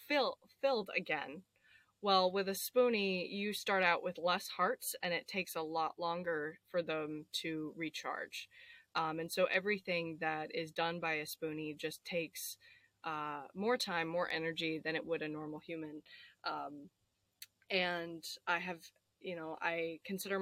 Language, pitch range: English, 160-190 Hz